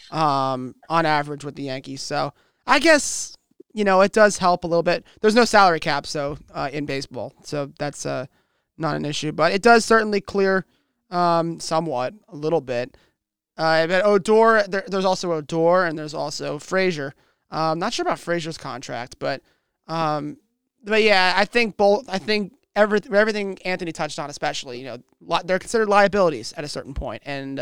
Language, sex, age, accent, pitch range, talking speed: English, male, 20-39, American, 165-210 Hz, 175 wpm